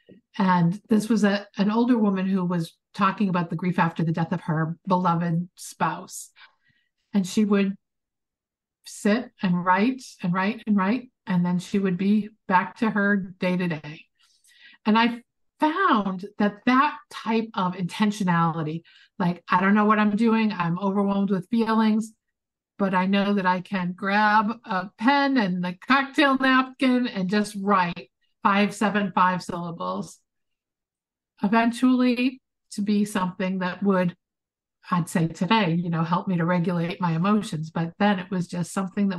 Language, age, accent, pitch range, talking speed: English, 50-69, American, 180-220 Hz, 160 wpm